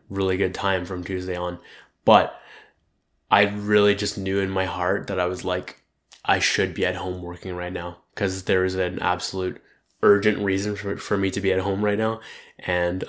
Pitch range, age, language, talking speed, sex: 90-105 Hz, 20-39, English, 195 wpm, male